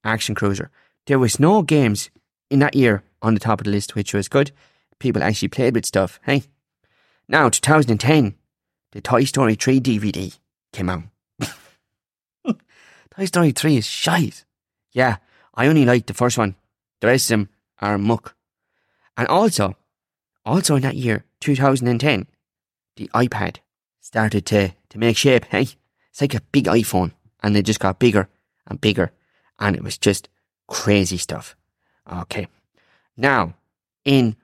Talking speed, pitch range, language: 150 wpm, 100-140 Hz, English